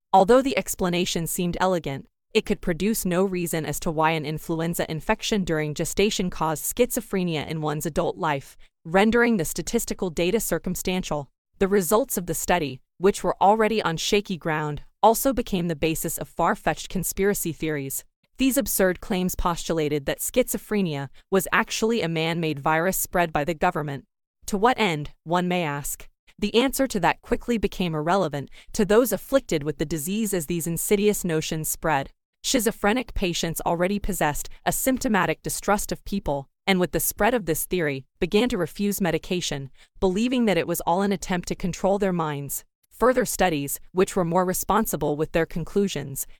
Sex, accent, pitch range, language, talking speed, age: female, American, 160-205 Hz, English, 165 wpm, 20-39